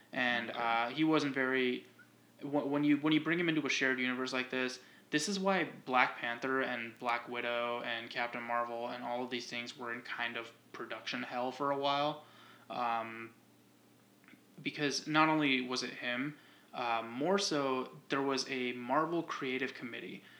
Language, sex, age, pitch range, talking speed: English, male, 20-39, 120-140 Hz, 170 wpm